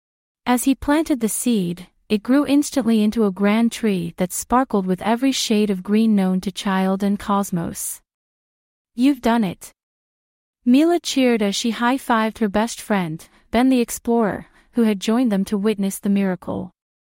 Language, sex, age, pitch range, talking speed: English, female, 30-49, 195-245 Hz, 160 wpm